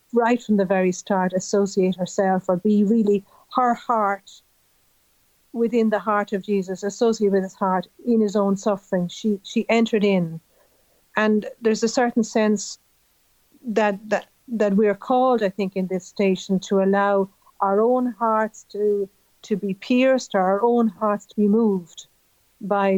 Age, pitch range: 50-69, 190-215 Hz